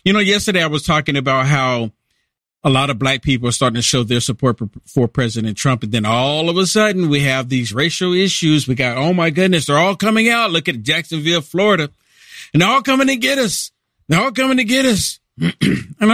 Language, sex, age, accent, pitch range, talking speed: English, male, 50-69, American, 135-215 Hz, 225 wpm